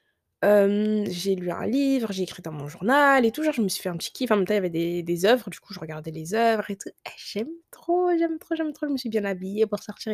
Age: 20-39